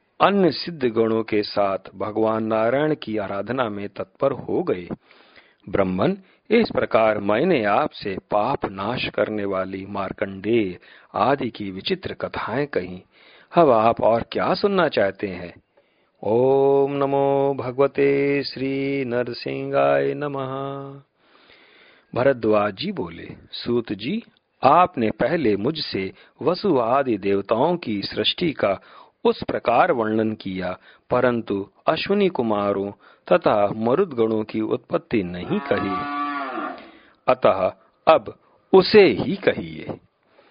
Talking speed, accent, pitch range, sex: 105 wpm, native, 105-140 Hz, male